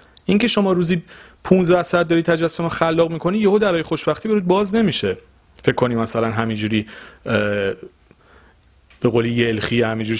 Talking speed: 135 wpm